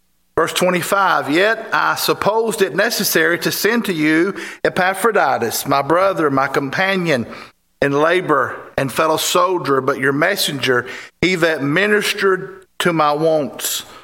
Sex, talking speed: male, 130 wpm